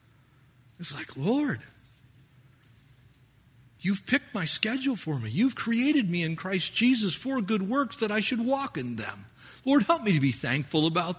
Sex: male